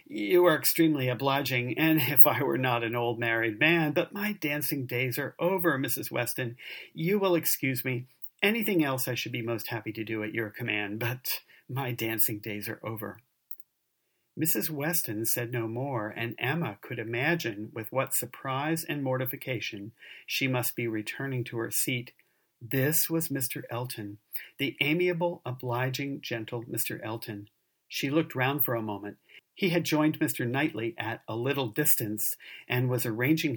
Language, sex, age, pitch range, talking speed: English, male, 40-59, 115-150 Hz, 165 wpm